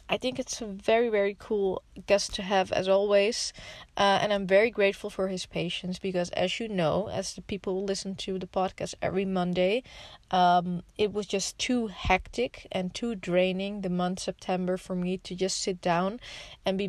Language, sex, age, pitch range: English, female, 20-39, 180-205 Hz